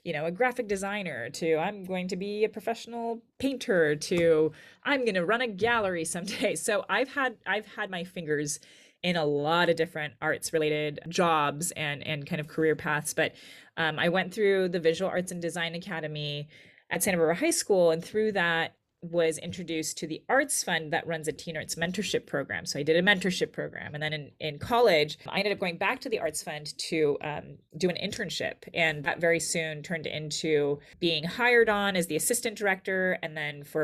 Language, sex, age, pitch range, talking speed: English, female, 30-49, 155-195 Hz, 205 wpm